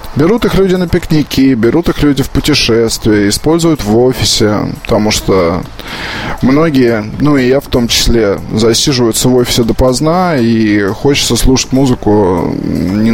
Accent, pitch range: native, 115-150 Hz